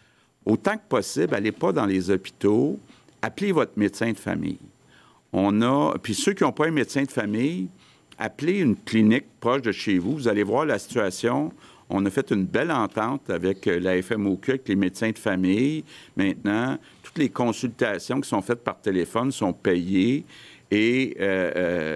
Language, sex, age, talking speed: French, male, 50-69, 175 wpm